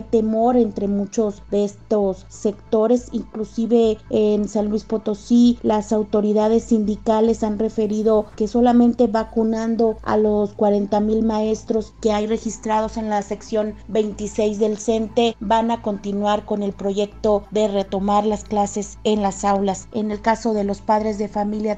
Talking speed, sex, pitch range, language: 150 wpm, female, 210-225 Hz, Spanish